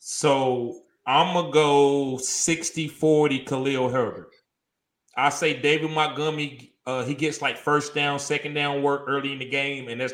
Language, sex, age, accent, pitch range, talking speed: English, male, 30-49, American, 130-160 Hz, 160 wpm